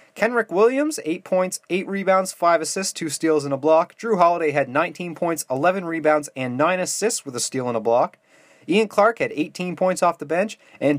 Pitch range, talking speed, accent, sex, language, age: 145-185 Hz, 205 wpm, American, male, English, 30-49